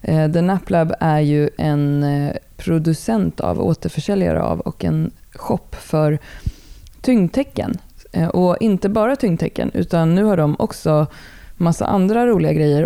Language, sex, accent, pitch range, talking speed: Swedish, female, native, 150-175 Hz, 130 wpm